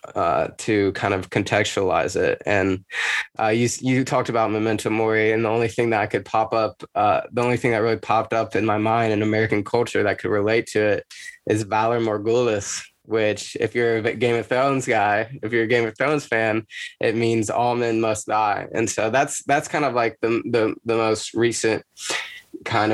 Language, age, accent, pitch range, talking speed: English, 20-39, American, 105-120 Hz, 205 wpm